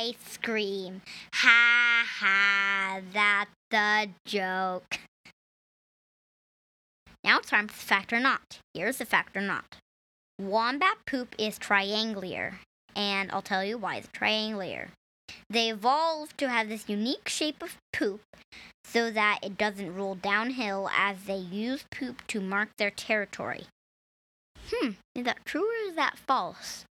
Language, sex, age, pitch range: English, male, 10-29, 200-245 Hz